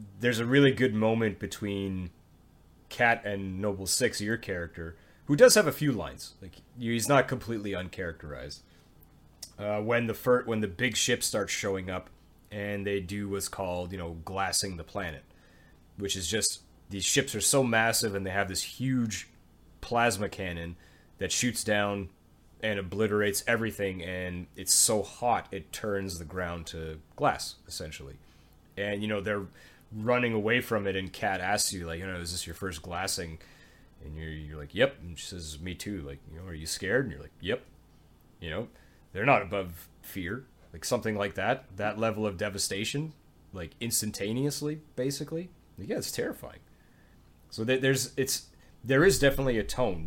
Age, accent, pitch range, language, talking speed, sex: 30-49, American, 85-115 Hz, English, 175 wpm, male